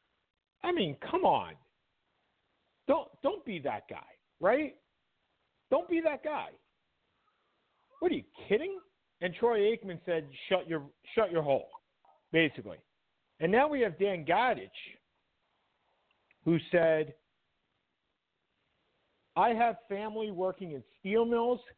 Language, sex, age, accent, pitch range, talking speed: English, male, 50-69, American, 140-200 Hz, 120 wpm